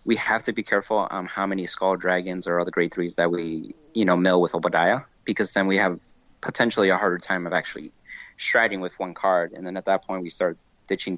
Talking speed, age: 235 wpm, 20-39